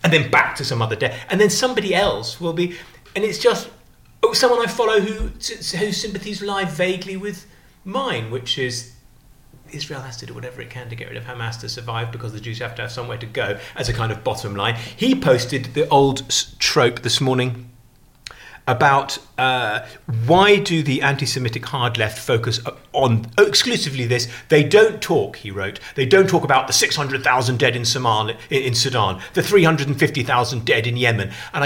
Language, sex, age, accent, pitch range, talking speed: English, male, 30-49, British, 120-175 Hz, 200 wpm